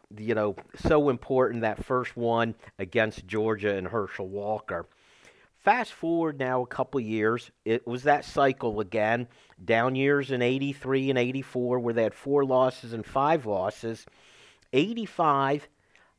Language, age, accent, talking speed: English, 50-69, American, 140 wpm